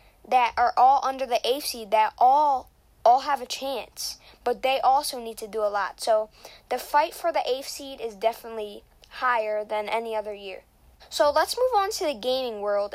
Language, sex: English, female